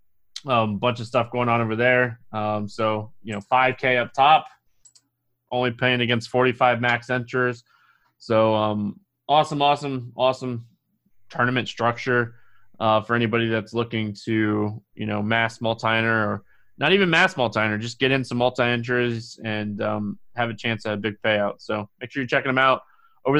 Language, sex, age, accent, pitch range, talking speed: English, male, 20-39, American, 110-135 Hz, 165 wpm